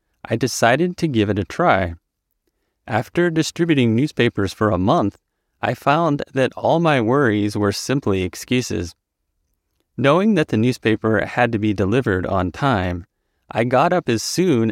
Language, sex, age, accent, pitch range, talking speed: English, male, 30-49, American, 95-130 Hz, 150 wpm